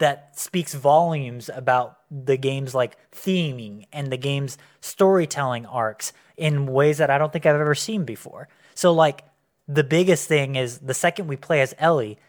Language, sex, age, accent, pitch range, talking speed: English, male, 20-39, American, 130-160 Hz, 170 wpm